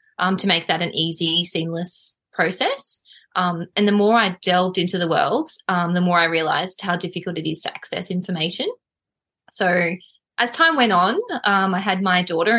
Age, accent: 20-39, Australian